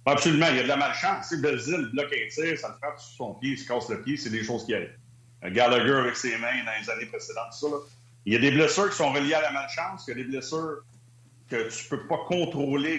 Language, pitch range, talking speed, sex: French, 120-145 Hz, 290 wpm, male